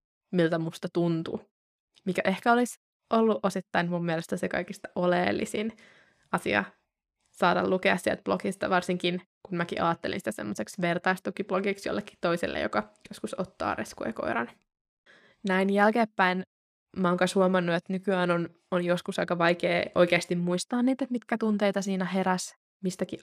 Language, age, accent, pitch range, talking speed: Finnish, 20-39, native, 175-195 Hz, 135 wpm